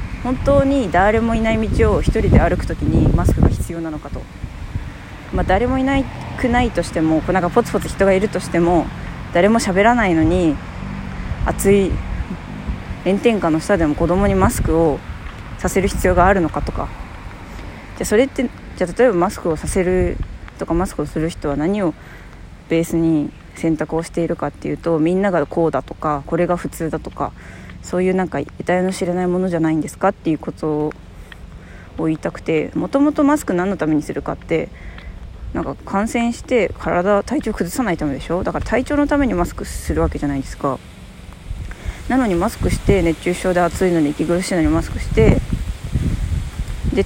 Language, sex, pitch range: Japanese, female, 145-200 Hz